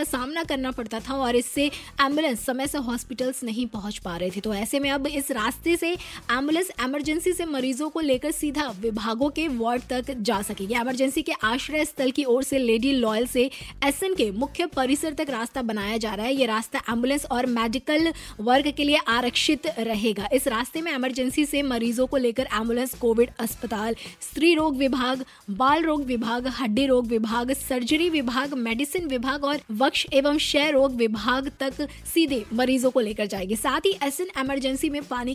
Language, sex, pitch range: Hindi, female, 240-295 Hz